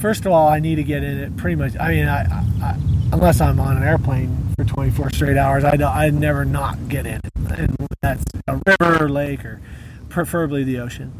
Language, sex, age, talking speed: English, male, 30-49, 215 wpm